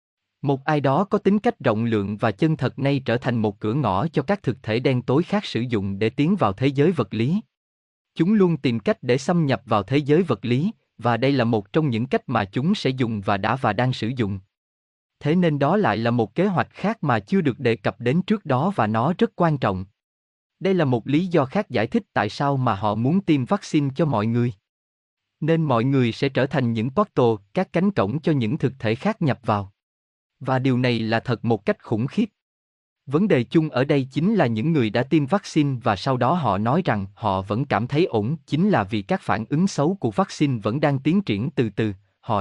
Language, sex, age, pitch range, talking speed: Vietnamese, male, 20-39, 110-160 Hz, 240 wpm